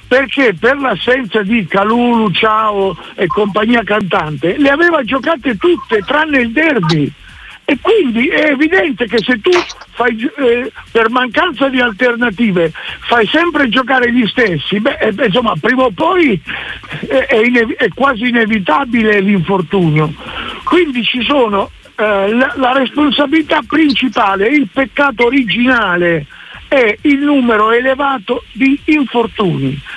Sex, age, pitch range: male, 60-79, 210-275 Hz